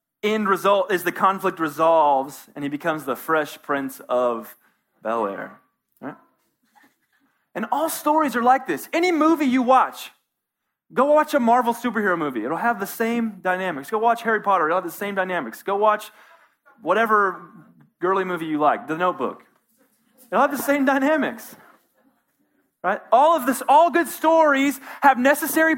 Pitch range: 220-285 Hz